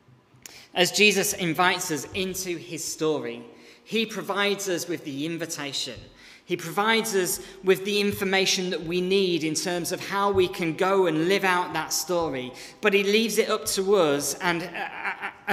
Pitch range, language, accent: 150-195 Hz, English, British